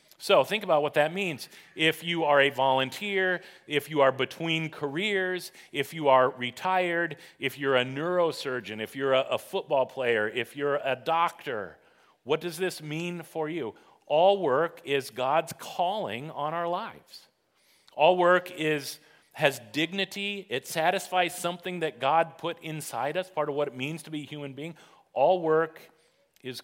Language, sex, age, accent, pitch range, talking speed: English, male, 40-59, American, 130-175 Hz, 160 wpm